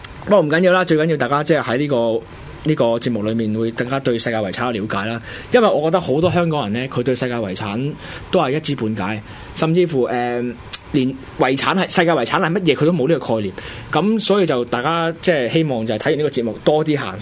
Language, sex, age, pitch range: Chinese, male, 20-39, 115-165 Hz